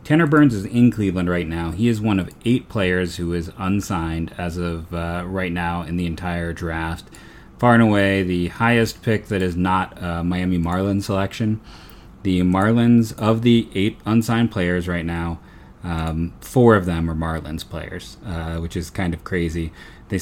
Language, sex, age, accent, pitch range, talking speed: English, male, 30-49, American, 85-100 Hz, 180 wpm